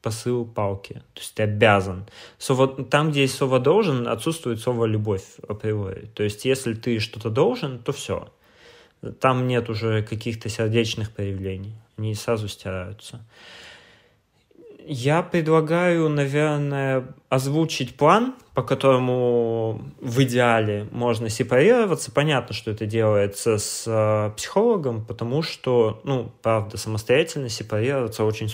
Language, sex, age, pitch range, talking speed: Russian, male, 20-39, 110-130 Hz, 120 wpm